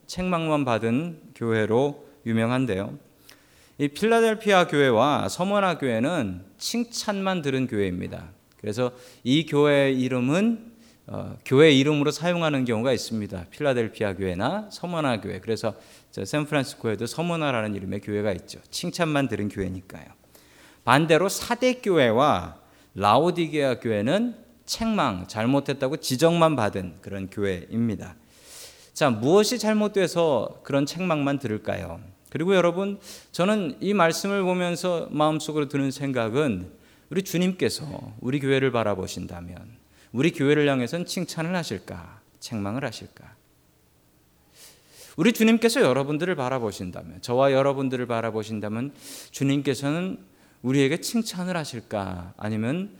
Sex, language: male, Korean